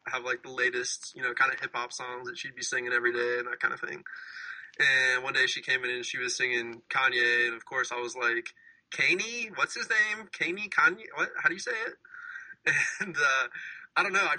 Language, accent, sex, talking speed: English, American, male, 240 wpm